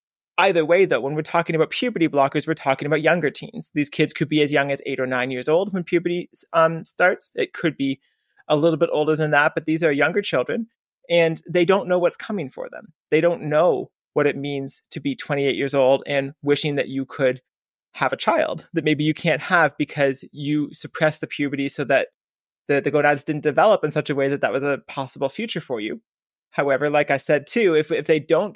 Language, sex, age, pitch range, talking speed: English, male, 30-49, 140-165 Hz, 230 wpm